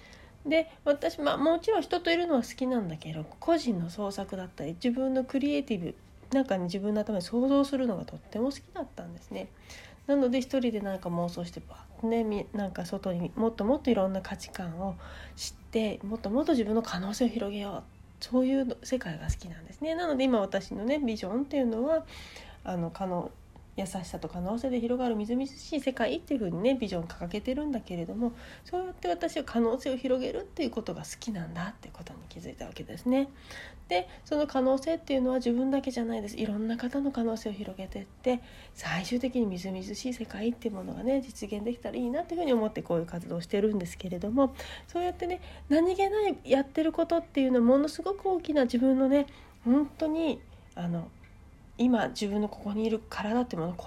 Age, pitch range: 40-59, 195-275 Hz